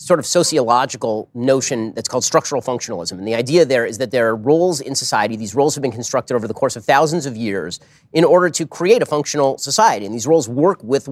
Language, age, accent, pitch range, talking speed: English, 30-49, American, 130-165 Hz, 230 wpm